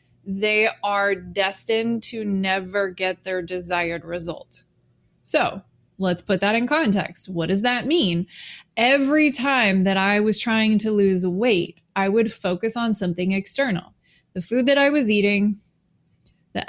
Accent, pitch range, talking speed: American, 185-225 Hz, 145 wpm